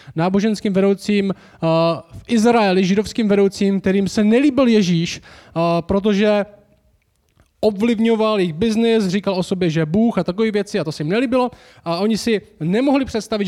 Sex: male